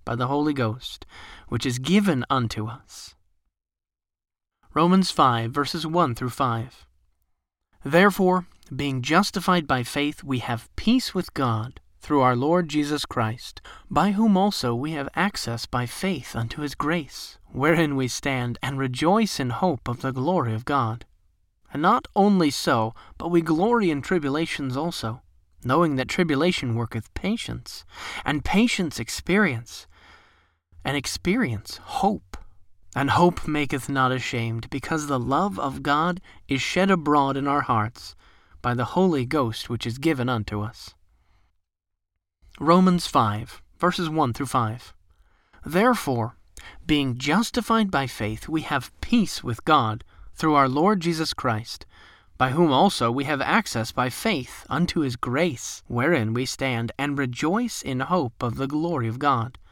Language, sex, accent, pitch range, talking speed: English, male, American, 115-165 Hz, 140 wpm